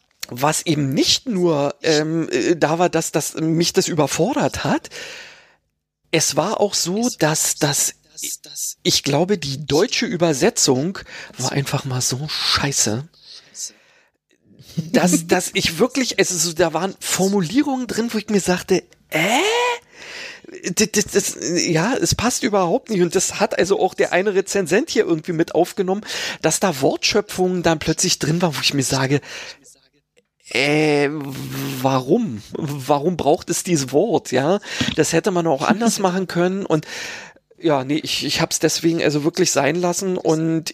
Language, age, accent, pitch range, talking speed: German, 40-59, German, 155-205 Hz, 155 wpm